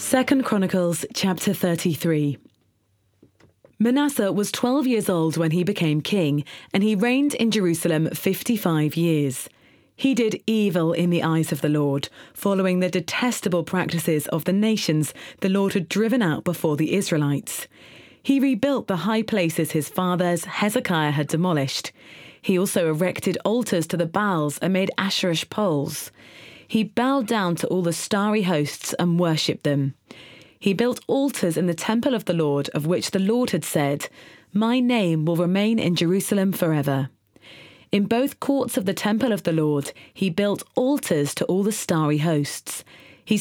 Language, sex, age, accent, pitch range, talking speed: English, female, 30-49, British, 160-220 Hz, 160 wpm